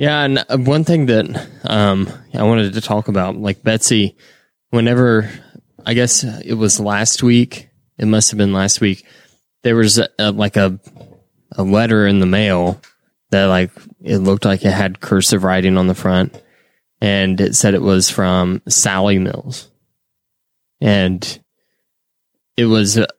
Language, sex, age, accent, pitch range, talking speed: English, male, 20-39, American, 100-115 Hz, 155 wpm